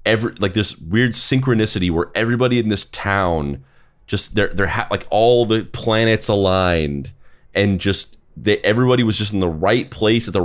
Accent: American